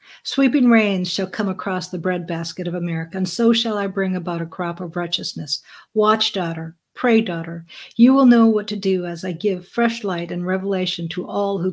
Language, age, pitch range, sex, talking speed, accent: English, 60-79, 185-230 Hz, female, 200 wpm, American